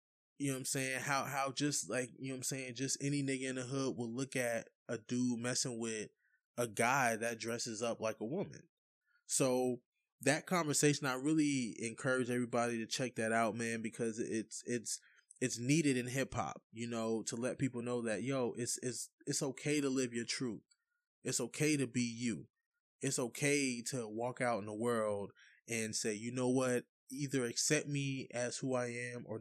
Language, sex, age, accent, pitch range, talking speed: English, male, 20-39, American, 115-135 Hz, 200 wpm